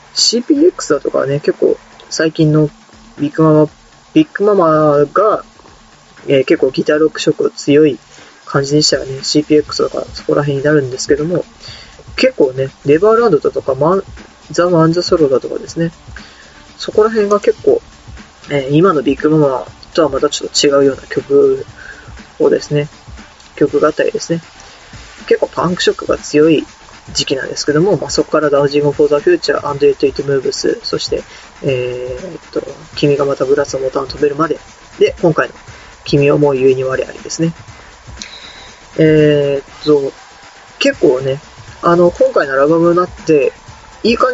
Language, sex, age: Japanese, female, 20-39